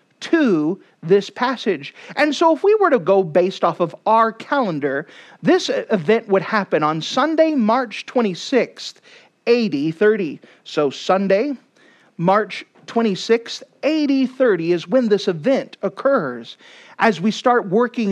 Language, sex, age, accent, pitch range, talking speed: English, male, 40-59, American, 170-245 Hz, 125 wpm